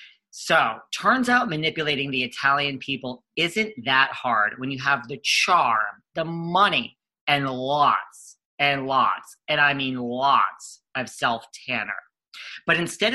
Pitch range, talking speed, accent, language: 130-185 Hz, 130 wpm, American, English